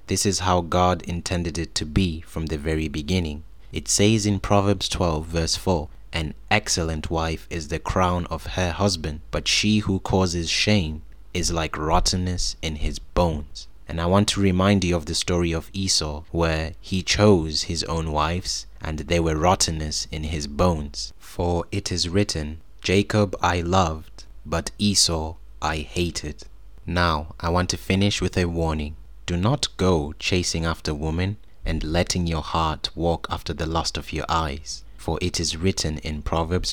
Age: 20-39